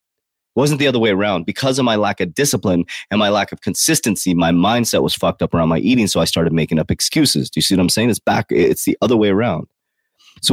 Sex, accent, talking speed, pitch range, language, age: male, American, 250 wpm, 95-130 Hz, English, 30-49